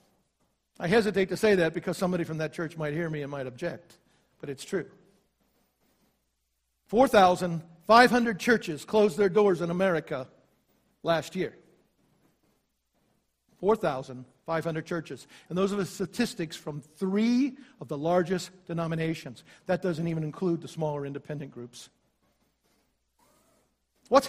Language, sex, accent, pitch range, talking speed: English, male, American, 180-265 Hz, 125 wpm